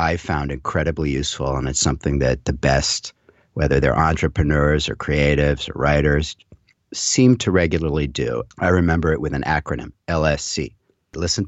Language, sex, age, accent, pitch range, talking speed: English, male, 50-69, American, 75-95 Hz, 150 wpm